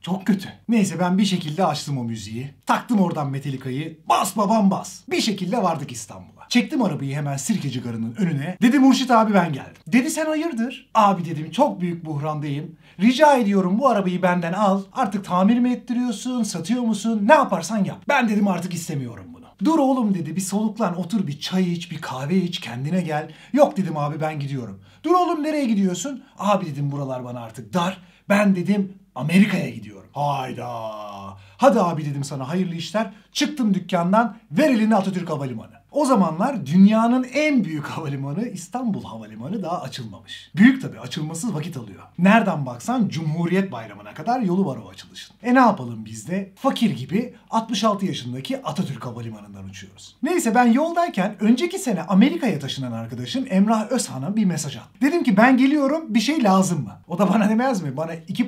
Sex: male